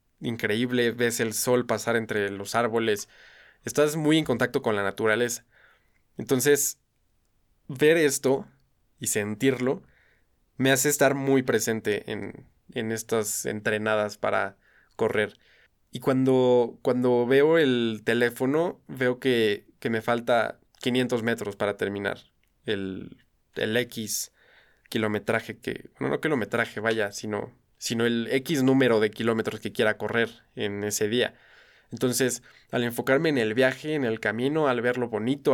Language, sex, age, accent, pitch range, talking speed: Spanish, male, 20-39, Mexican, 110-130 Hz, 135 wpm